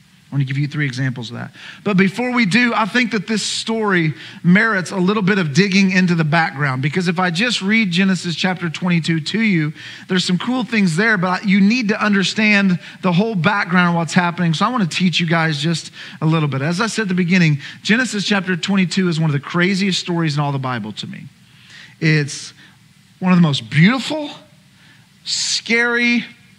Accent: American